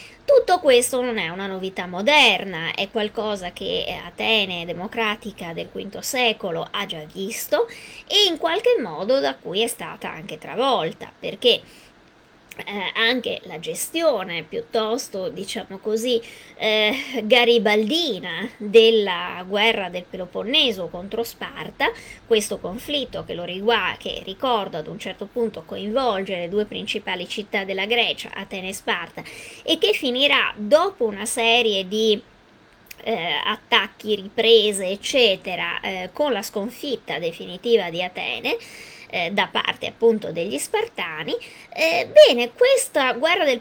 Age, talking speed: 20-39, 130 wpm